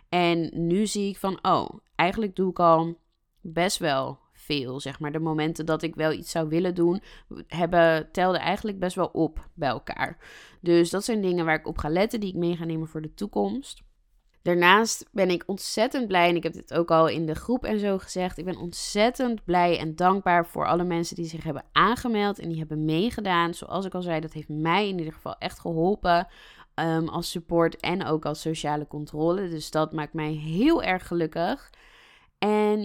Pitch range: 160-200 Hz